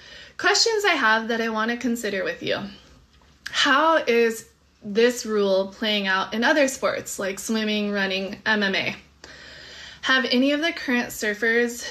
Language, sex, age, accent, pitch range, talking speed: English, female, 20-39, American, 215-280 Hz, 140 wpm